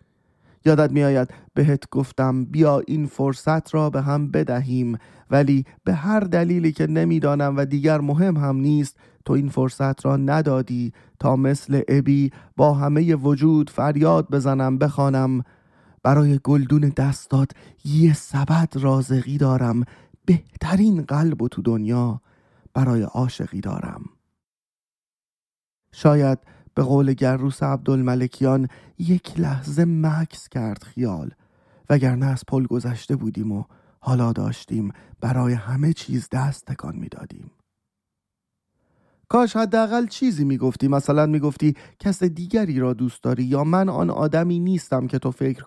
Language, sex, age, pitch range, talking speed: Persian, male, 30-49, 130-155 Hz, 125 wpm